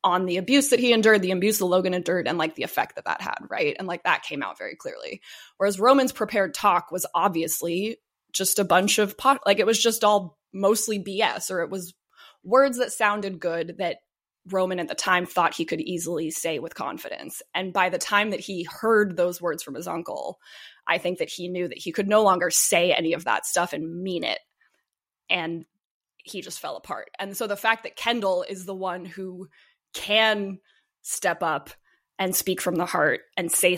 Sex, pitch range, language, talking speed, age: female, 175-210 Hz, English, 210 wpm, 20-39